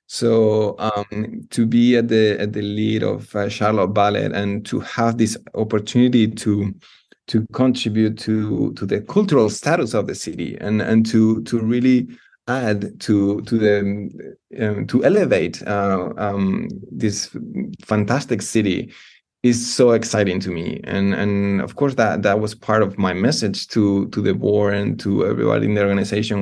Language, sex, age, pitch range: English, male, 20-39, 100-115 Hz